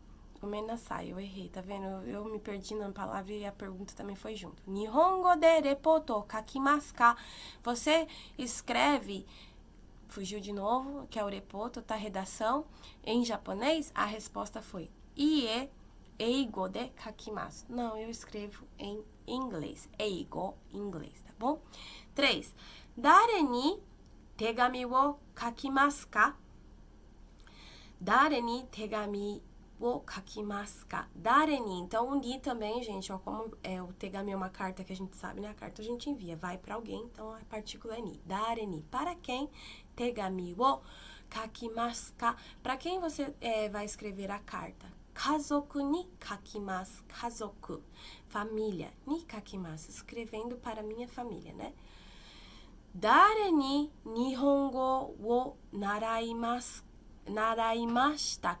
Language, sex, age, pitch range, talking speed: Portuguese, female, 20-39, 205-260 Hz, 130 wpm